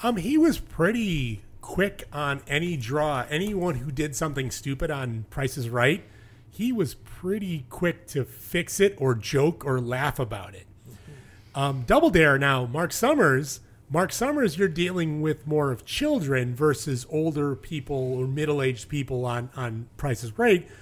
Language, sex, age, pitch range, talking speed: English, male, 30-49, 125-175 Hz, 155 wpm